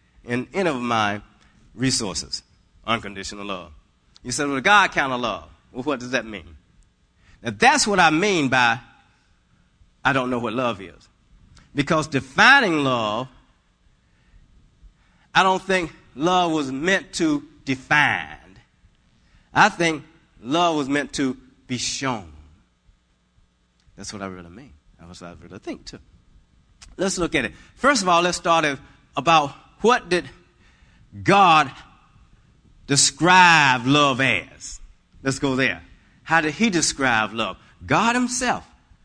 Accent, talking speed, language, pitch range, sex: American, 135 wpm, English, 100-160 Hz, male